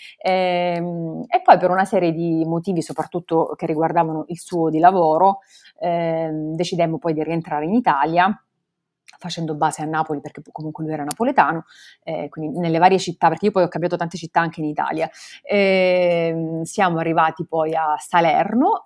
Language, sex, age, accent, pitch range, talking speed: Italian, female, 30-49, native, 160-185 Hz, 165 wpm